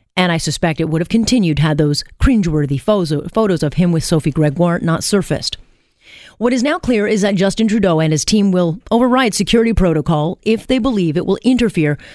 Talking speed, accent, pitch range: 195 wpm, American, 160-210 Hz